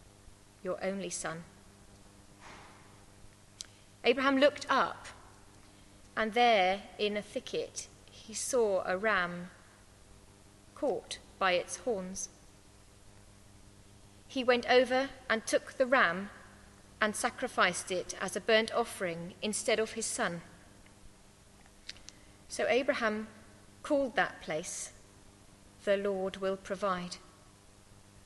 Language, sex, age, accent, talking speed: English, female, 30-49, British, 100 wpm